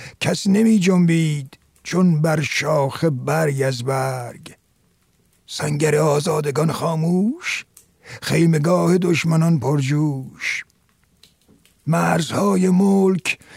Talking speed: 75 wpm